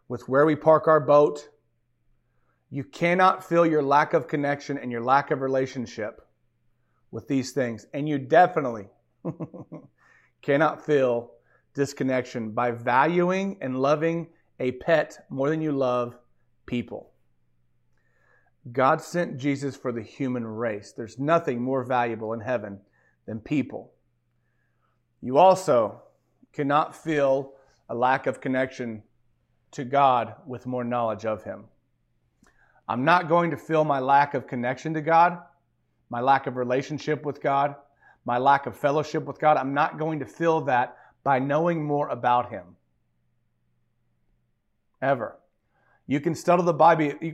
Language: English